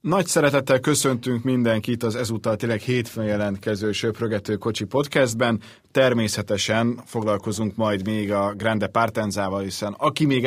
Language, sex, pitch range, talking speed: Hungarian, male, 105-130 Hz, 125 wpm